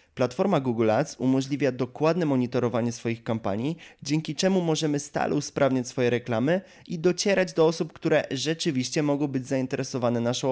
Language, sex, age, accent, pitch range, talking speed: Polish, male, 20-39, native, 120-155 Hz, 145 wpm